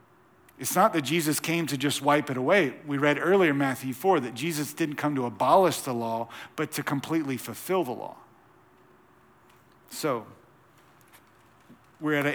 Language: English